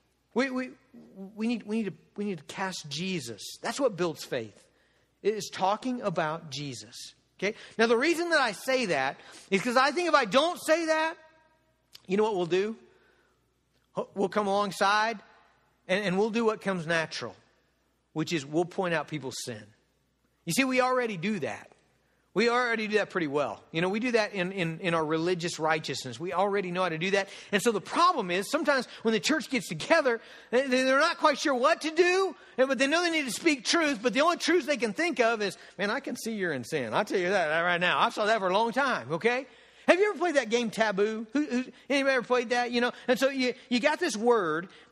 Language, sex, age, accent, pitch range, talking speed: English, male, 50-69, American, 180-260 Hz, 225 wpm